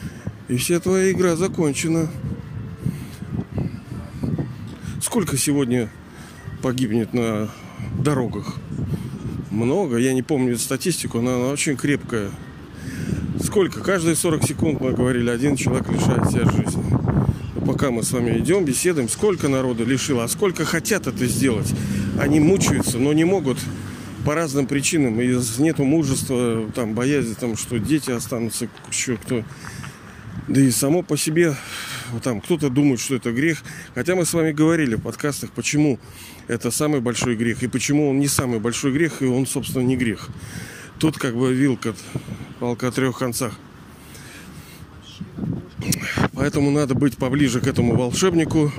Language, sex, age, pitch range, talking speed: Russian, male, 40-59, 120-150 Hz, 140 wpm